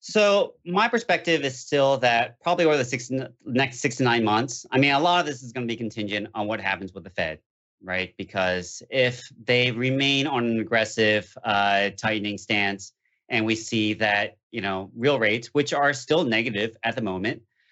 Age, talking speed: 40-59, 195 wpm